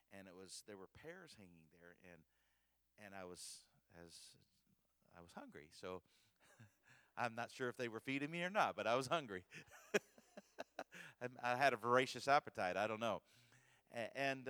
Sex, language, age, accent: male, English, 40-59, American